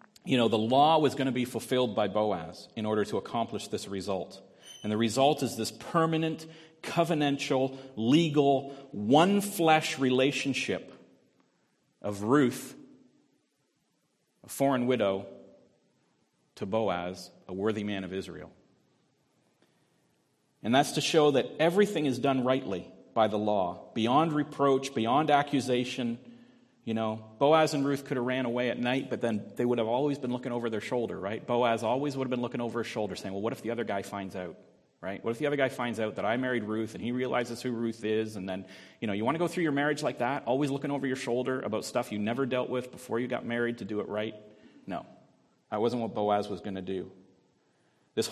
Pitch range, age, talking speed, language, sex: 110-145 Hz, 40-59, 195 wpm, English, male